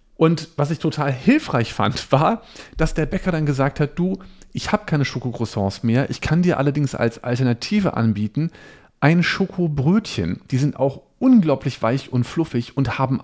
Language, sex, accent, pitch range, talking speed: German, male, German, 110-160 Hz, 170 wpm